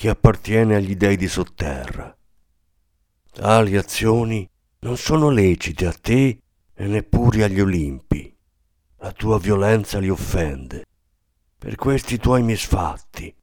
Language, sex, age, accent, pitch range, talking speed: Italian, male, 50-69, native, 80-110 Hz, 115 wpm